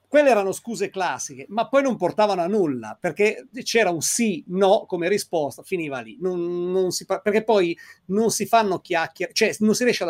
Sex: male